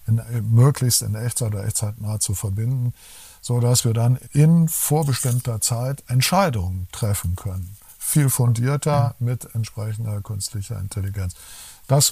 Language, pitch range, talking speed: German, 110-130 Hz, 130 wpm